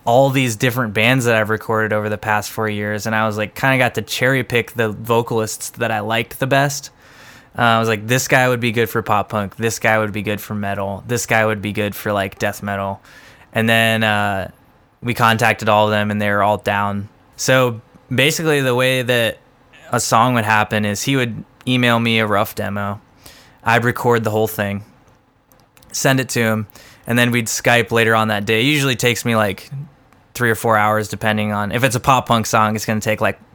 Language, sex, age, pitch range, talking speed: English, male, 20-39, 105-125 Hz, 225 wpm